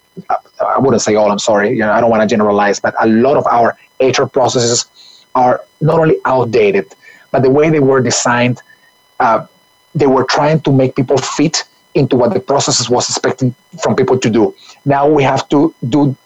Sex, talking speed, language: male, 195 wpm, English